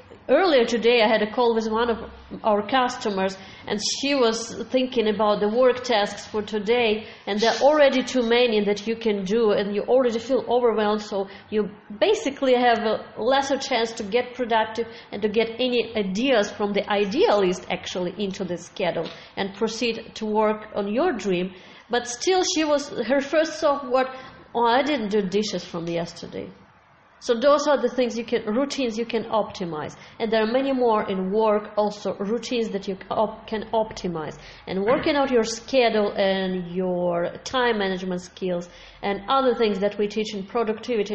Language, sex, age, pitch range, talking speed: English, female, 30-49, 195-240 Hz, 180 wpm